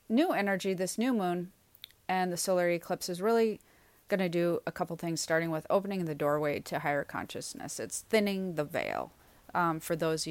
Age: 30-49